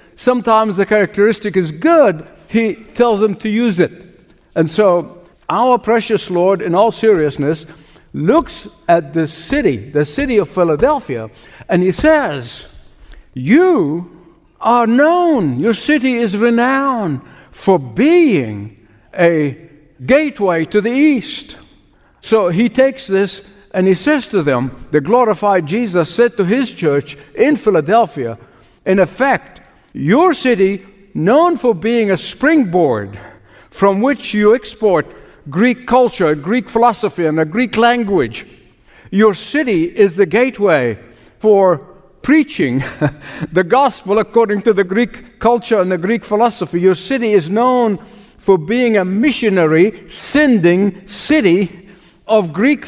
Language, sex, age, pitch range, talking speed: English, male, 60-79, 175-240 Hz, 130 wpm